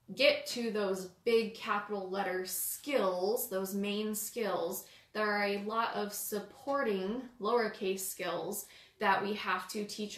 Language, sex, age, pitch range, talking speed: English, female, 20-39, 190-220 Hz, 135 wpm